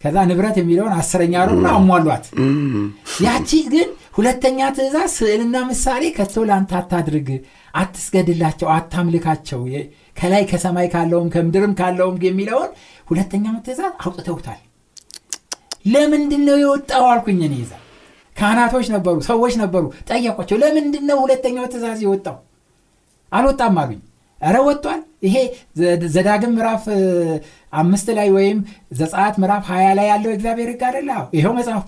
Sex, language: male, Amharic